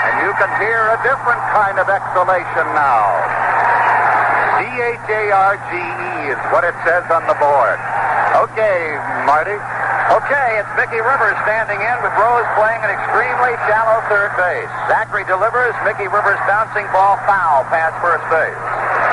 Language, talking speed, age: English, 140 wpm, 60-79